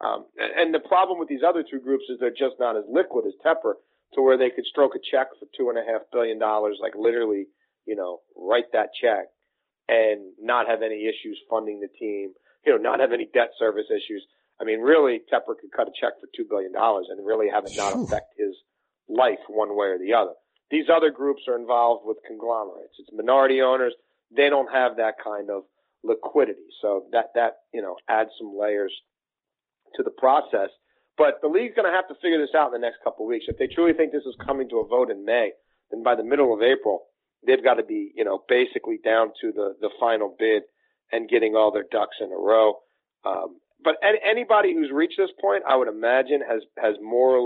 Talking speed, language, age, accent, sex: 225 wpm, English, 40-59, American, male